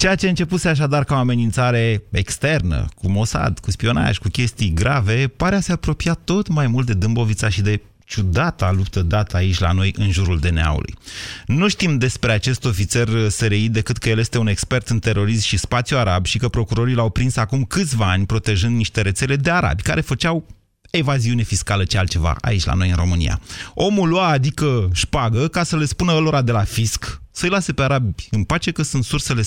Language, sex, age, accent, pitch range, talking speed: Romanian, male, 30-49, native, 100-130 Hz, 200 wpm